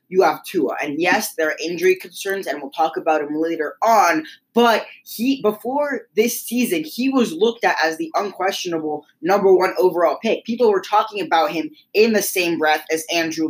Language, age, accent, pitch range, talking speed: English, 10-29, American, 165-225 Hz, 190 wpm